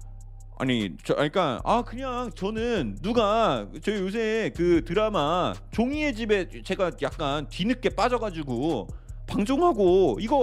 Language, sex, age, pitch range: Korean, male, 30-49, 160-265 Hz